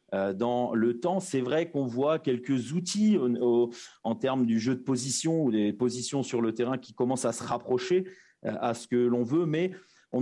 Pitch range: 110-140 Hz